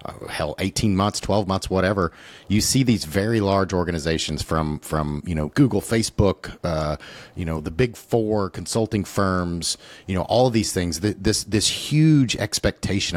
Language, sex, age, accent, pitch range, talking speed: English, male, 40-59, American, 85-110 Hz, 160 wpm